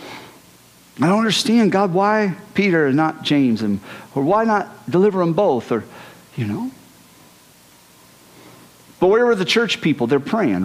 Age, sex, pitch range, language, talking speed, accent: 50-69, male, 140-210 Hz, English, 150 wpm, American